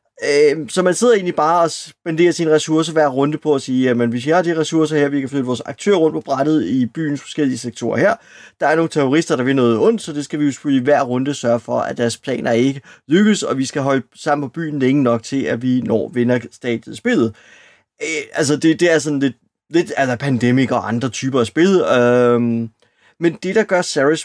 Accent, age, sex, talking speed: native, 30-49, male, 225 wpm